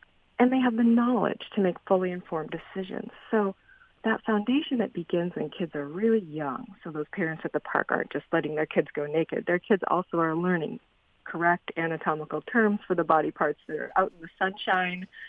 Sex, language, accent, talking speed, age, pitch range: female, English, American, 200 wpm, 40-59, 165-210 Hz